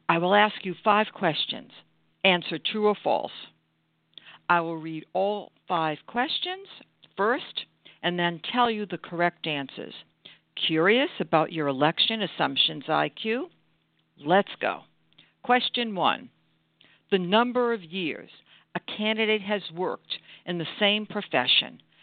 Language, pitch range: English, 140-215 Hz